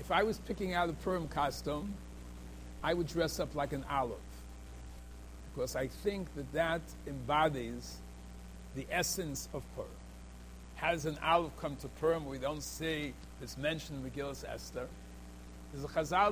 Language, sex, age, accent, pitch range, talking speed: English, male, 60-79, American, 125-180 Hz, 155 wpm